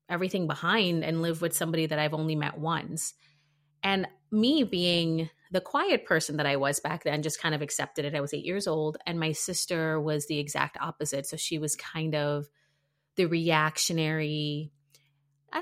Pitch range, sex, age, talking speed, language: 155-185 Hz, female, 30-49, 180 wpm, English